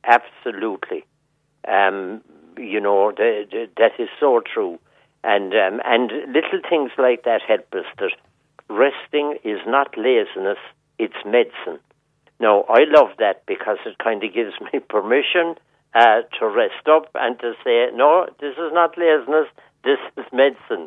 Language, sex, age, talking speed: English, male, 60-79, 150 wpm